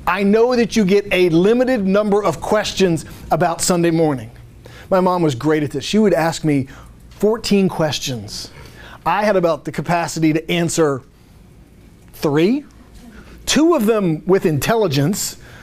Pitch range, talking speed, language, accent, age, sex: 160-200 Hz, 145 wpm, English, American, 40-59, male